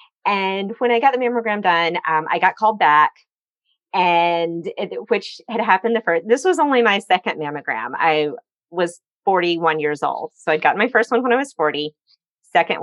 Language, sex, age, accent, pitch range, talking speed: English, female, 30-49, American, 165-230 Hz, 190 wpm